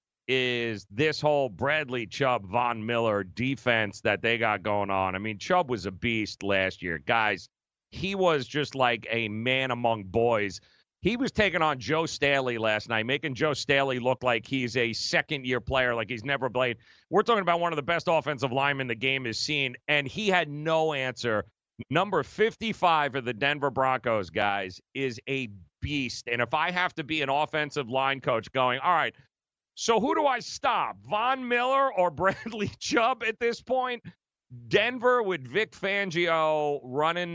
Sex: male